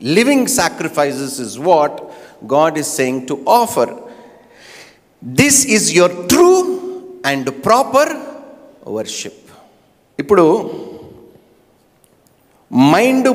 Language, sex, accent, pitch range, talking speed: Telugu, male, native, 135-220 Hz, 80 wpm